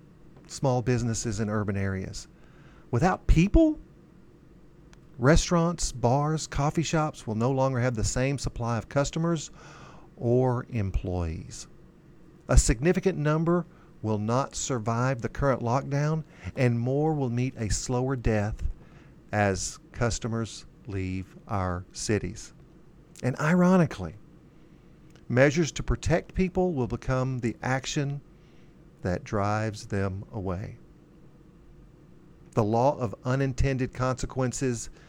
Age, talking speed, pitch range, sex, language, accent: 50-69, 105 wpm, 115-155 Hz, male, English, American